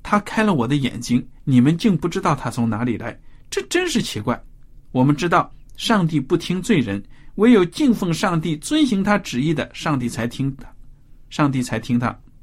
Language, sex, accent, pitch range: Chinese, male, native, 120-170 Hz